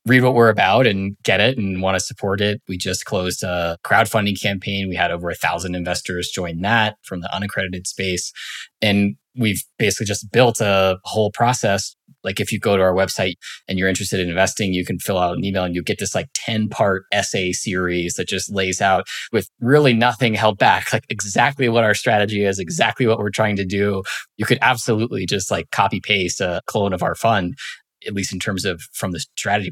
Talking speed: 215 wpm